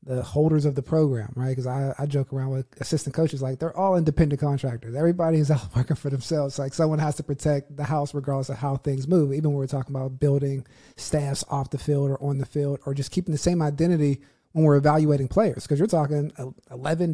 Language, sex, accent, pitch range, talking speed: English, male, American, 140-165 Hz, 230 wpm